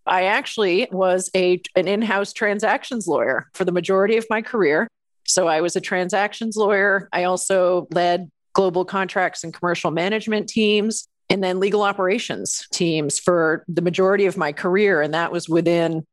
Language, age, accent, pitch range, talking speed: English, 40-59, American, 170-195 Hz, 165 wpm